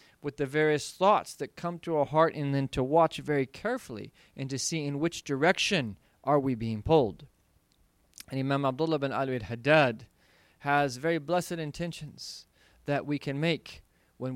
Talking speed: 165 wpm